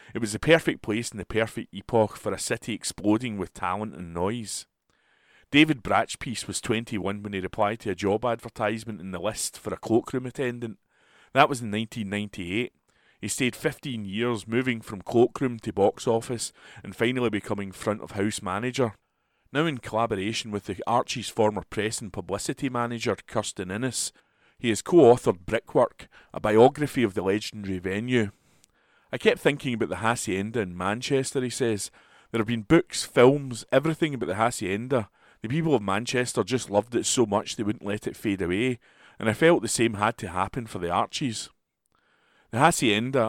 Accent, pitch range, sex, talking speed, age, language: British, 100-125 Hz, male, 175 wpm, 30-49, English